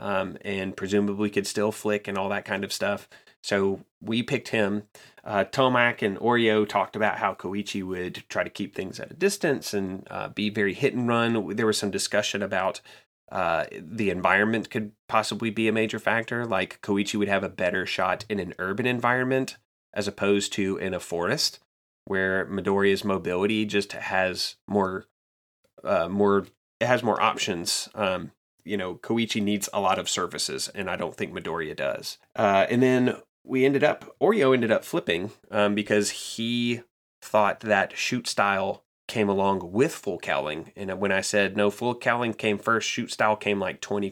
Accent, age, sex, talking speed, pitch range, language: American, 30-49, male, 180 wpm, 95-115 Hz, English